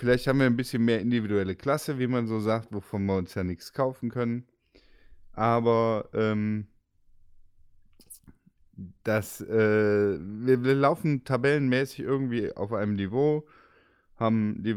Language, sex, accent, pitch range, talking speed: German, male, German, 100-120 Hz, 135 wpm